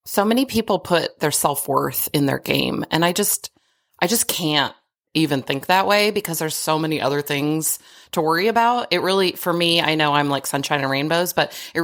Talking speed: 210 wpm